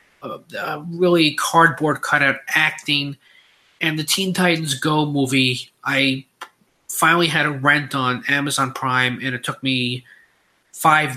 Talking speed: 130 wpm